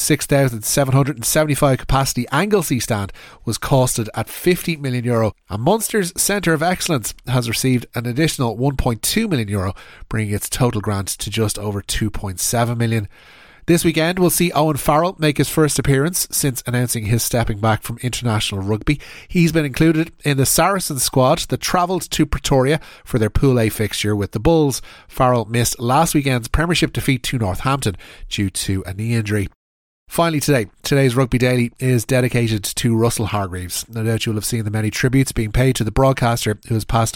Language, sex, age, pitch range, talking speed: English, male, 30-49, 110-140 Hz, 175 wpm